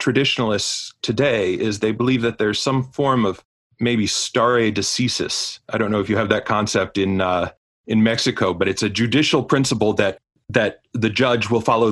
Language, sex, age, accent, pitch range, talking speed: English, male, 30-49, American, 100-125 Hz, 180 wpm